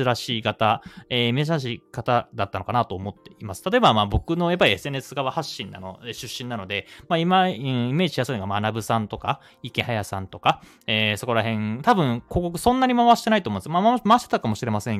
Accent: native